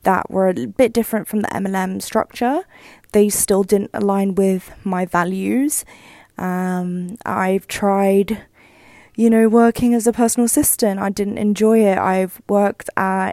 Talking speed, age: 150 wpm, 20-39